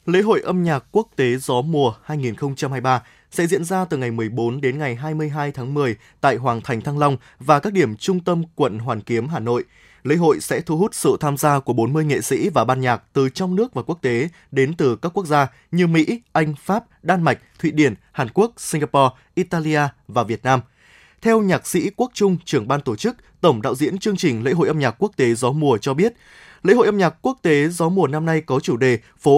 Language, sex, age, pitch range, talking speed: Vietnamese, male, 20-39, 130-180 Hz, 235 wpm